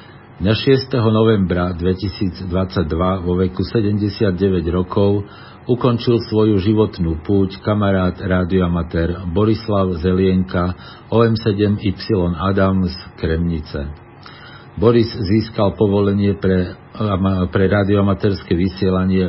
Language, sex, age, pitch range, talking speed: Slovak, male, 50-69, 90-105 Hz, 80 wpm